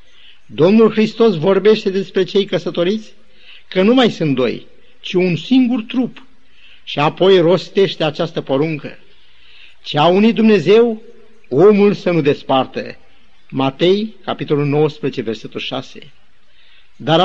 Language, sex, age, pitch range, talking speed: Romanian, male, 50-69, 165-215 Hz, 120 wpm